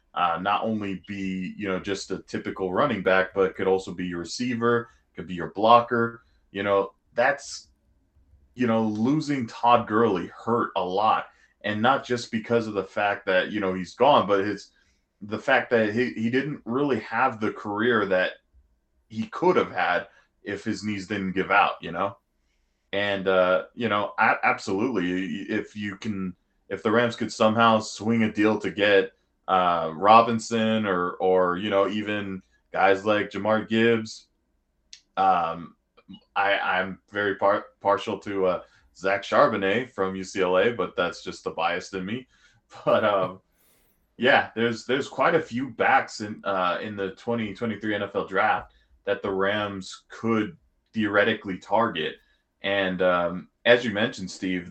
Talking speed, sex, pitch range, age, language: 160 wpm, male, 95-110 Hz, 20-39, English